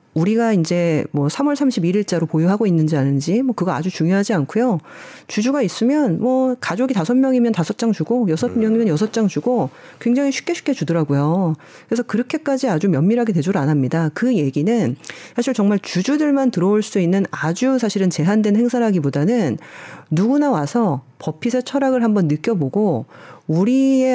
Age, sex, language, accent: 40-59, female, Korean, native